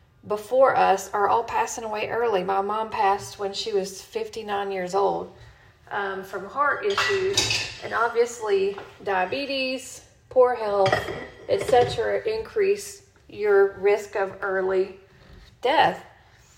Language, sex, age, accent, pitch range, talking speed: English, female, 40-59, American, 195-235 Hz, 115 wpm